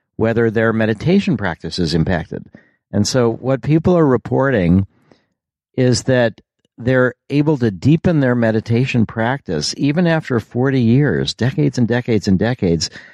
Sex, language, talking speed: male, English, 135 wpm